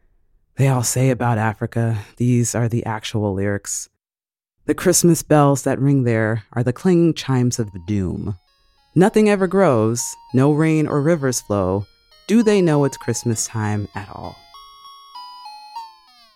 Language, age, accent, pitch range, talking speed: English, 30-49, American, 90-125 Hz, 140 wpm